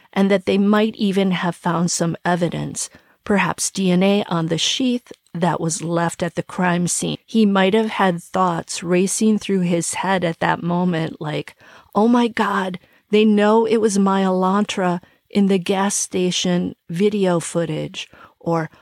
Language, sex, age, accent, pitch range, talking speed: English, female, 40-59, American, 175-215 Hz, 160 wpm